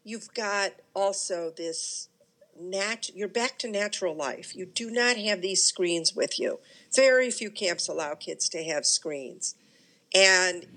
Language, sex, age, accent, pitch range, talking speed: English, female, 50-69, American, 185-240 Hz, 145 wpm